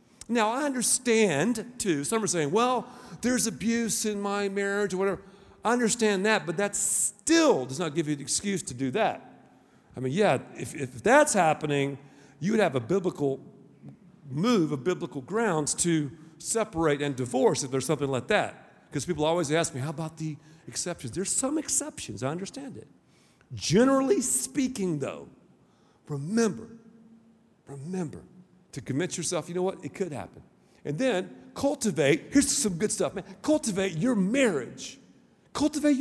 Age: 50-69